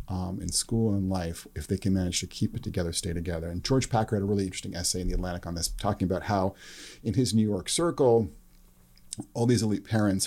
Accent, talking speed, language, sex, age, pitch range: American, 240 wpm, English, male, 40-59, 95-110 Hz